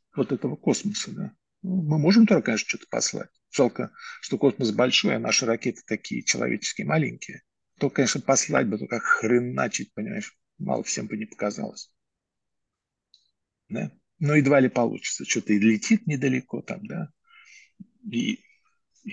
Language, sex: Russian, male